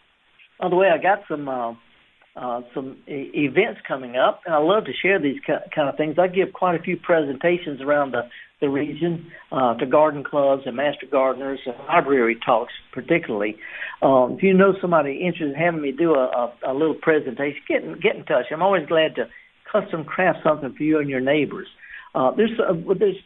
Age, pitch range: 60-79, 140-195 Hz